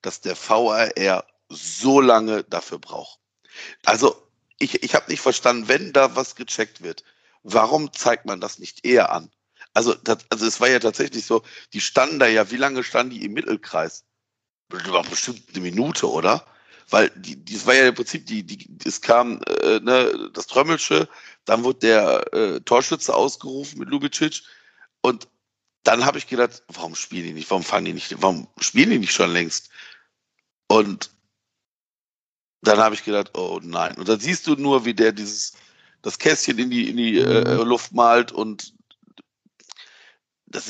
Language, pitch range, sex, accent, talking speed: German, 105-140 Hz, male, German, 170 wpm